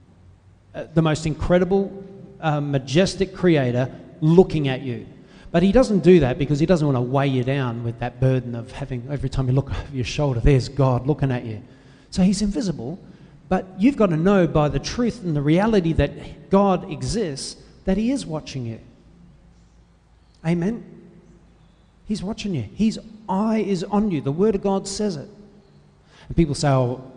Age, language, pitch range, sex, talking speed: 40-59, English, 130-190 Hz, male, 180 wpm